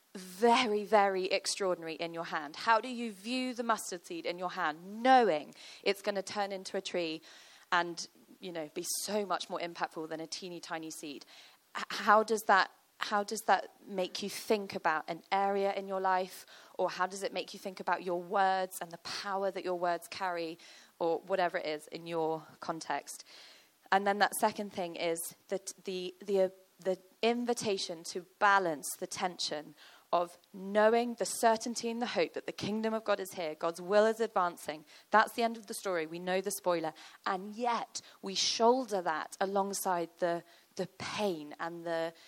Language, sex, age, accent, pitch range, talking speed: English, female, 20-39, British, 170-210 Hz, 185 wpm